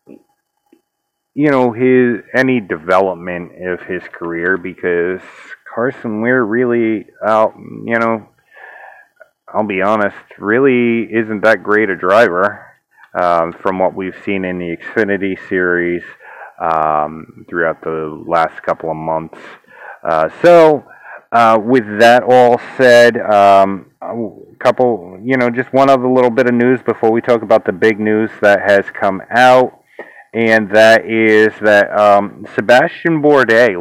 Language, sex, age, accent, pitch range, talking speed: English, male, 30-49, American, 100-125 Hz, 135 wpm